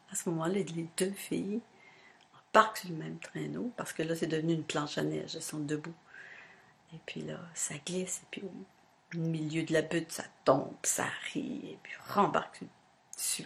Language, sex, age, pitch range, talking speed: French, female, 50-69, 165-200 Hz, 190 wpm